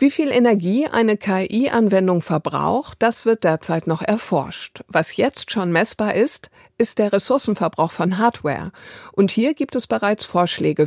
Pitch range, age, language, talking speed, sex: 165-225 Hz, 50-69, German, 150 wpm, female